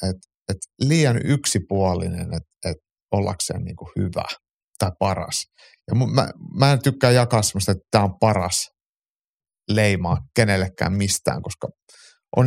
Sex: male